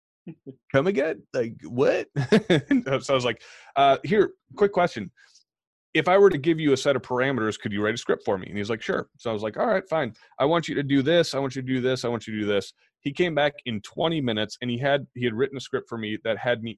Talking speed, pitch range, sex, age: 275 wpm, 105-135 Hz, male, 30-49